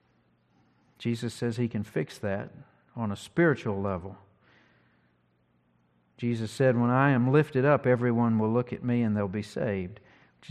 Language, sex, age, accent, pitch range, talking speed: English, male, 50-69, American, 95-125 Hz, 155 wpm